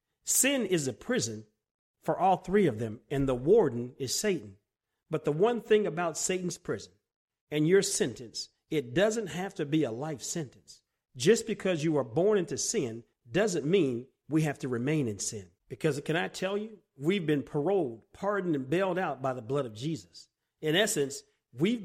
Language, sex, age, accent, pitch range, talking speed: English, male, 40-59, American, 130-190 Hz, 185 wpm